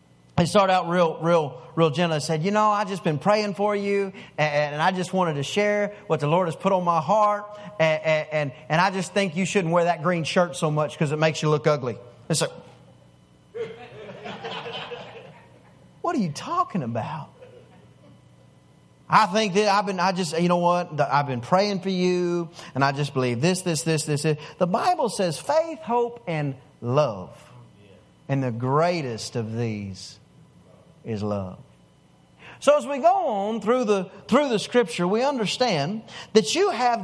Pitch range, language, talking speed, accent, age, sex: 150-215 Hz, English, 180 wpm, American, 30-49, male